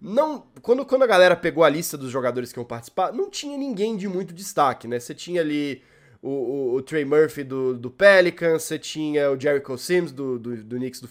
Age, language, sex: 20-39, Portuguese, male